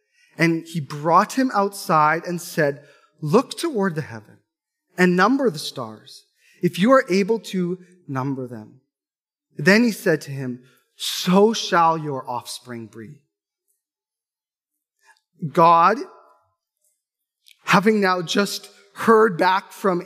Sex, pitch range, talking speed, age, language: male, 160-215 Hz, 115 wpm, 30-49, English